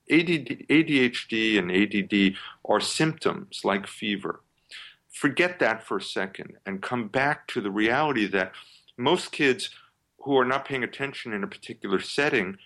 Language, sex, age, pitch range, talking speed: English, male, 50-69, 110-170 Hz, 140 wpm